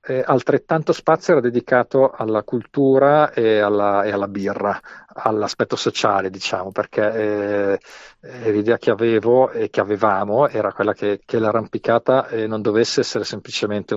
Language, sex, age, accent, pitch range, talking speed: Italian, male, 50-69, native, 105-125 Hz, 140 wpm